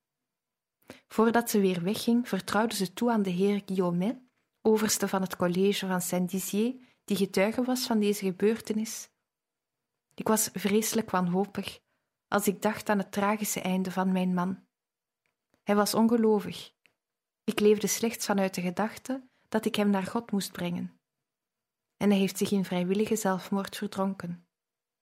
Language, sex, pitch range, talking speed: Dutch, female, 190-220 Hz, 145 wpm